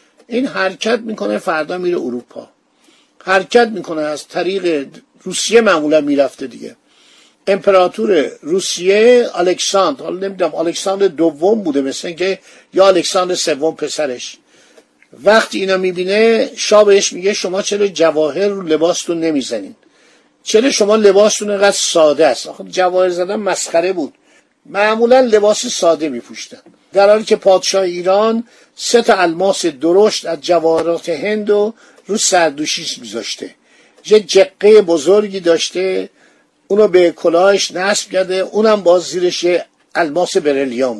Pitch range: 170-210 Hz